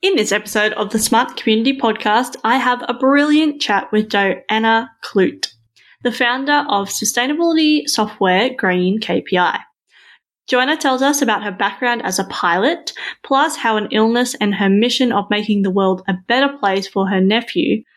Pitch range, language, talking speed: 195-255 Hz, English, 165 wpm